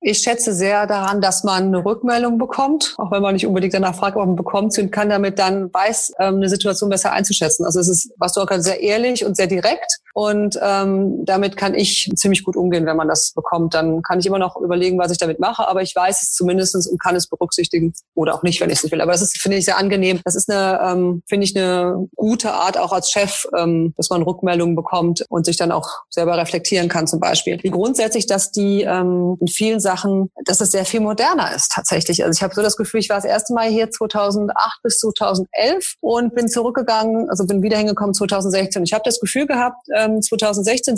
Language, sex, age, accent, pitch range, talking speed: Danish, female, 30-49, German, 185-220 Hz, 230 wpm